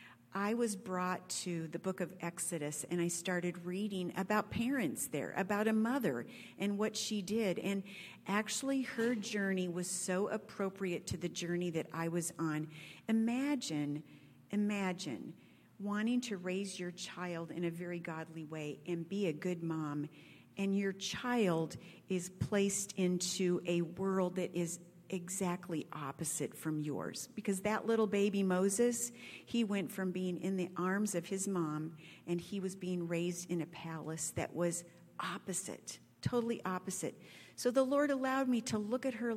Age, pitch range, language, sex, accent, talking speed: 50-69, 170-215 Hz, English, female, American, 160 wpm